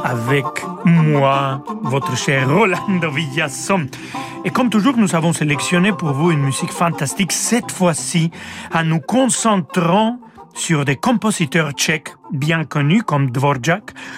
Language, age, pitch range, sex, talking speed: French, 40-59, 145-195 Hz, male, 125 wpm